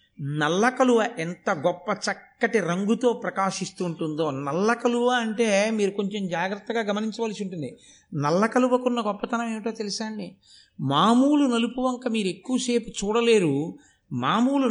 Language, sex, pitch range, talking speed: Telugu, male, 165-230 Hz, 110 wpm